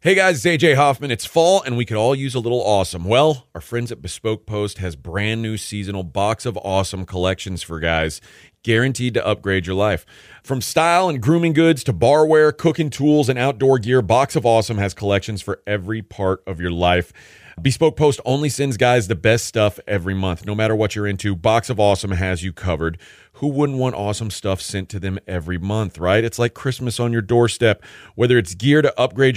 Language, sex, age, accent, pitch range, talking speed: English, male, 40-59, American, 95-130 Hz, 210 wpm